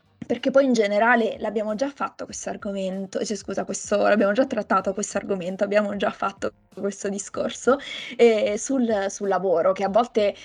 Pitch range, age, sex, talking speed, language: 195-225 Hz, 20-39, female, 165 wpm, Italian